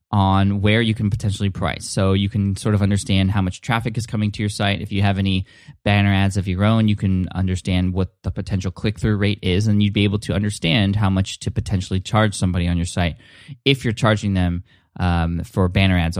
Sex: male